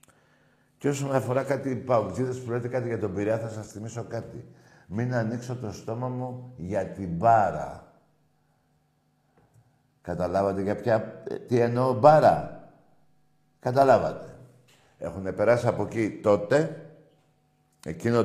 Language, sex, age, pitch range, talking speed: Greek, male, 60-79, 95-135 Hz, 120 wpm